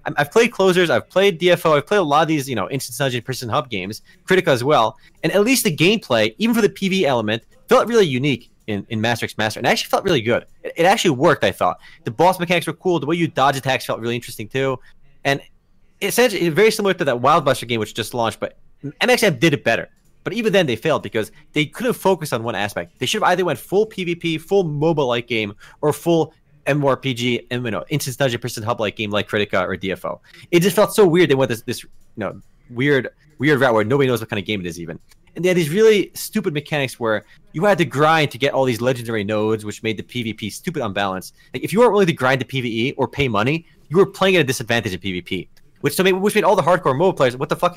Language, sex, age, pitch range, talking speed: English, male, 30-49, 120-190 Hz, 255 wpm